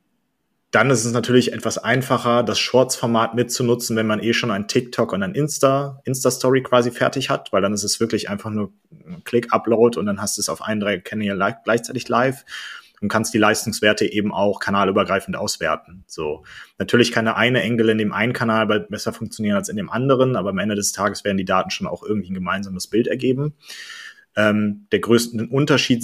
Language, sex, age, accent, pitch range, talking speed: German, male, 30-49, German, 105-125 Hz, 205 wpm